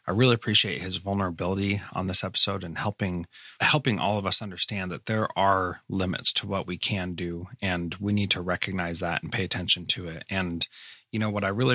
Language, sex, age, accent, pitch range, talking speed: English, male, 30-49, American, 95-110 Hz, 210 wpm